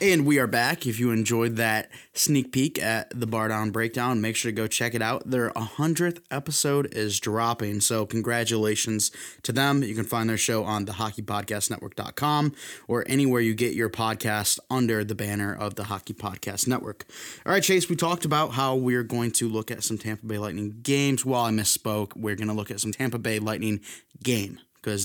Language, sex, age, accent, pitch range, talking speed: English, male, 20-39, American, 110-135 Hz, 200 wpm